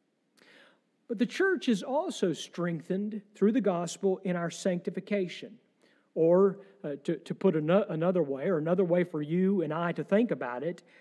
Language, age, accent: English, 50-69, American